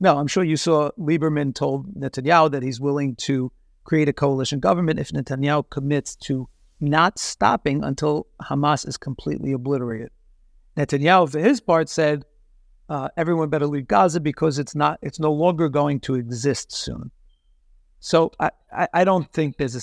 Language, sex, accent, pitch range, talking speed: English, male, American, 140-190 Hz, 165 wpm